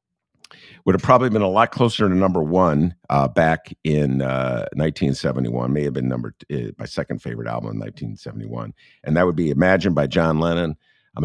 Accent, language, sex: American, English, male